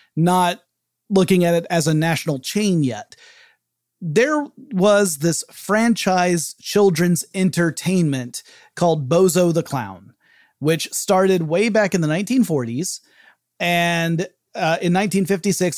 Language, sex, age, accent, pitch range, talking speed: English, male, 30-49, American, 155-190 Hz, 115 wpm